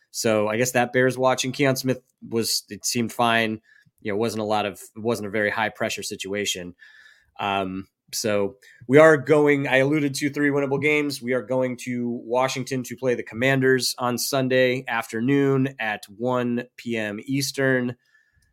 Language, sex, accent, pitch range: English, male, American, 110-135 Hz